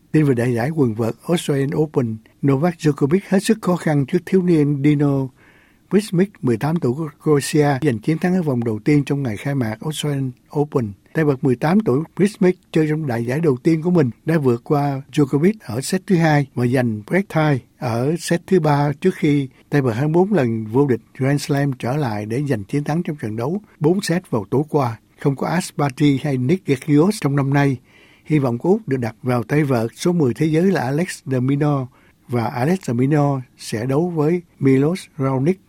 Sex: male